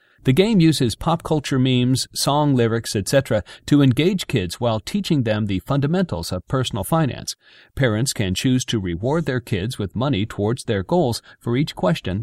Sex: male